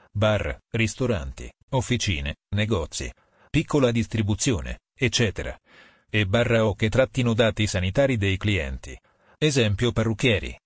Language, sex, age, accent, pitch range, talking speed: Italian, male, 40-59, native, 100-120 Hz, 100 wpm